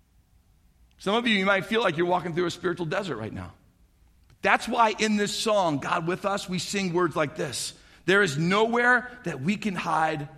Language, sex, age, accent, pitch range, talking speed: English, male, 50-69, American, 125-190 Hz, 200 wpm